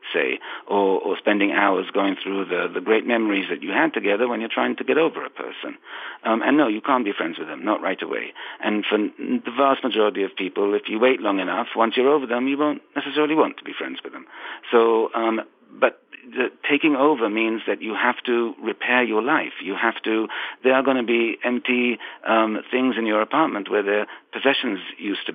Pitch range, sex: 105-130 Hz, male